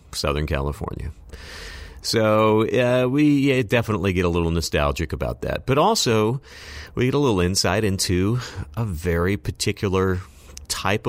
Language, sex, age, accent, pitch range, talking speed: English, male, 40-59, American, 80-110 Hz, 130 wpm